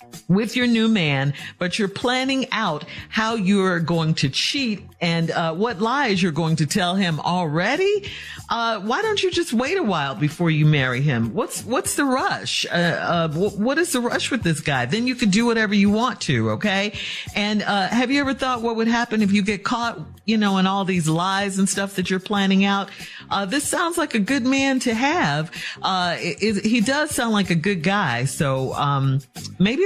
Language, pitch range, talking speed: English, 165-225 Hz, 210 wpm